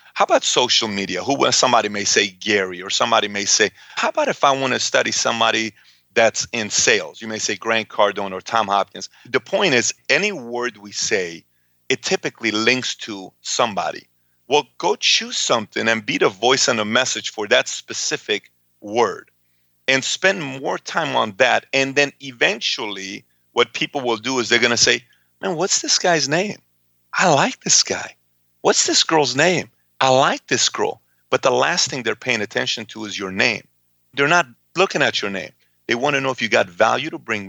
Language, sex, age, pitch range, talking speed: English, male, 40-59, 85-125 Hz, 195 wpm